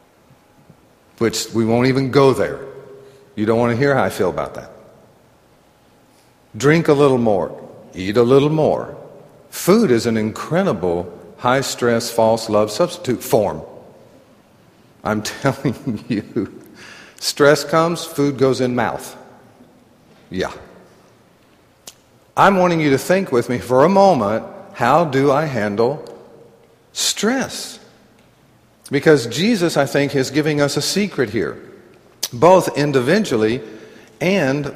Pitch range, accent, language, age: 125-165 Hz, American, Korean, 50-69